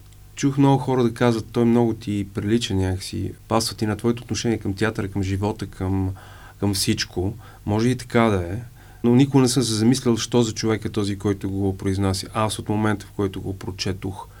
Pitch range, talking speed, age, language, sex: 100-120 Hz, 200 wpm, 30-49, Bulgarian, male